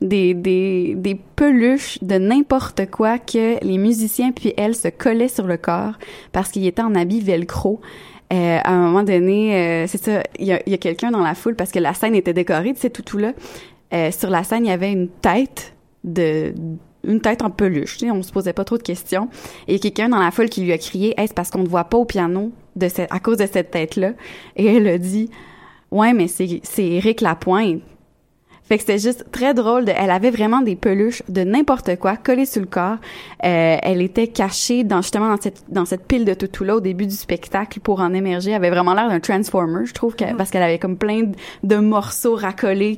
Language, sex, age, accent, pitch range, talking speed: French, female, 20-39, Canadian, 180-225 Hz, 230 wpm